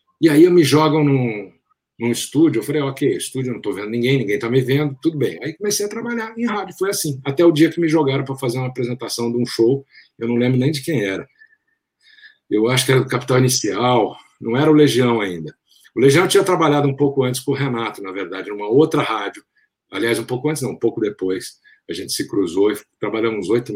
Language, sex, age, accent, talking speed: Portuguese, male, 50-69, Brazilian, 230 wpm